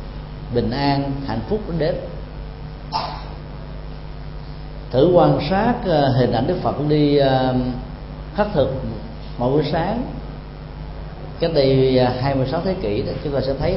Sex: male